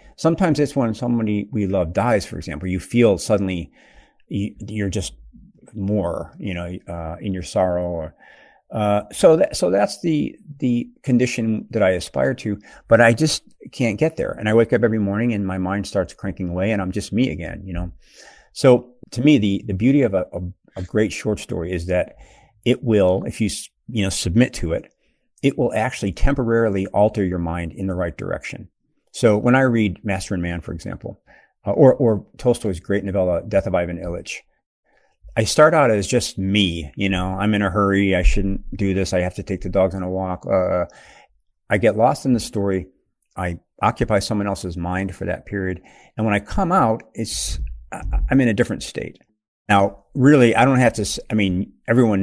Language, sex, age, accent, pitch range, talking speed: English, male, 50-69, American, 95-115 Hz, 200 wpm